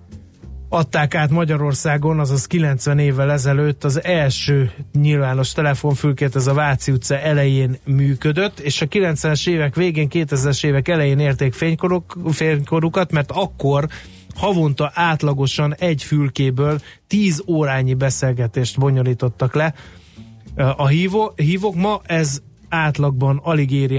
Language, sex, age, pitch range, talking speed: Hungarian, male, 30-49, 135-160 Hz, 120 wpm